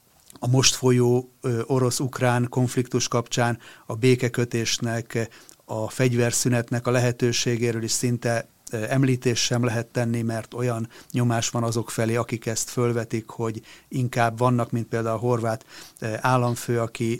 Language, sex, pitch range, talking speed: Hungarian, male, 115-125 Hz, 125 wpm